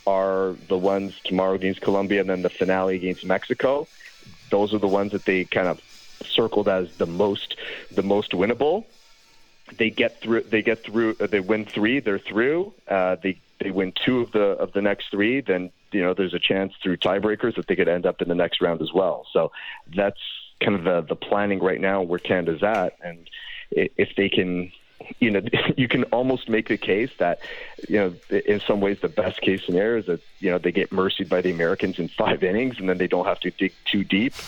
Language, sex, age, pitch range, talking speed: English, male, 30-49, 95-110 Hz, 215 wpm